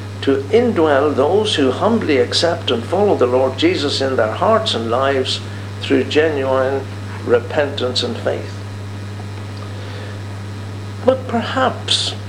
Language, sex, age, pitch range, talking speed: English, male, 60-79, 100-130 Hz, 110 wpm